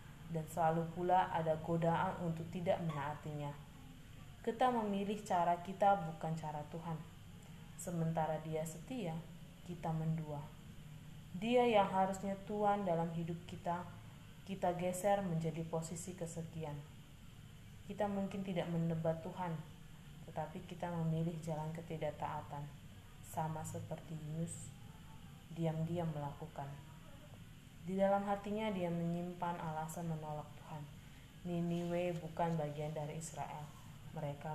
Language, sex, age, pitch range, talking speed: Indonesian, female, 20-39, 155-175 Hz, 105 wpm